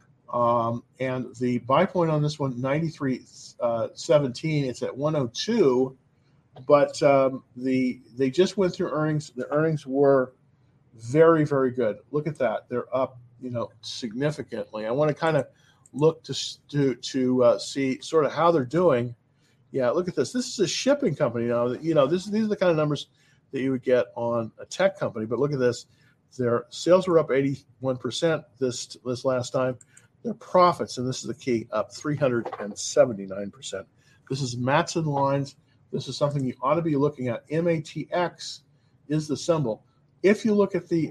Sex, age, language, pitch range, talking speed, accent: male, 40-59, English, 125-155 Hz, 185 wpm, American